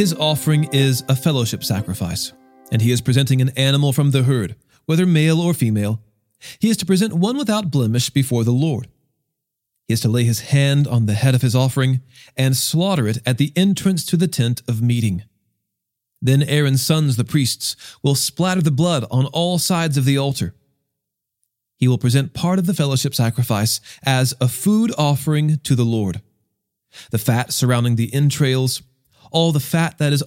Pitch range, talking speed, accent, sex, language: 120-160 Hz, 180 wpm, American, male, English